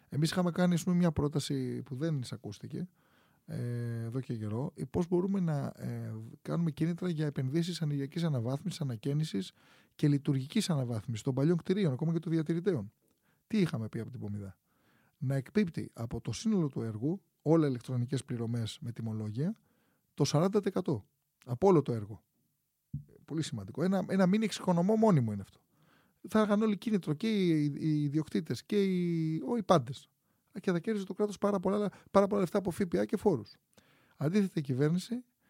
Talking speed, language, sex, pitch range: 155 wpm, Greek, male, 130-180 Hz